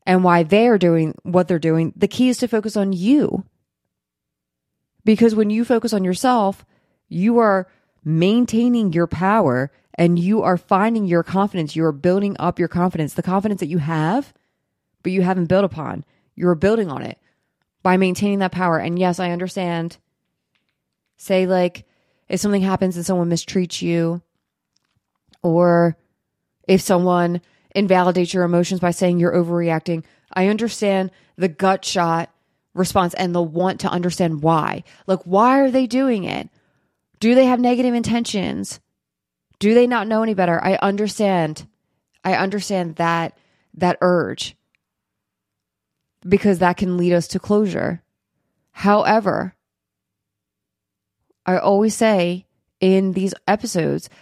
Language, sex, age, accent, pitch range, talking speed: English, female, 20-39, American, 175-205 Hz, 140 wpm